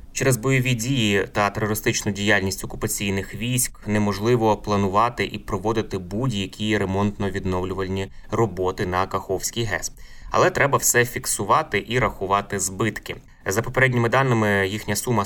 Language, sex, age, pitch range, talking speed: Ukrainian, male, 20-39, 95-115 Hz, 120 wpm